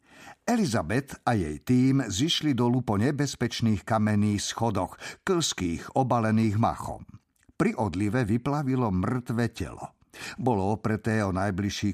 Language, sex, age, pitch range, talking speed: Slovak, male, 50-69, 100-135 Hz, 110 wpm